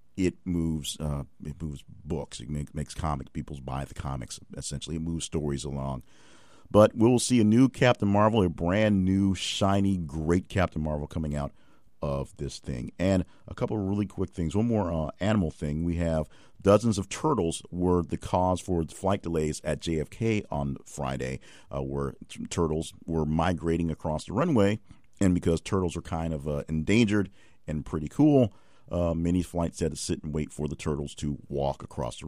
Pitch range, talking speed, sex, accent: 75-100 Hz, 185 wpm, male, American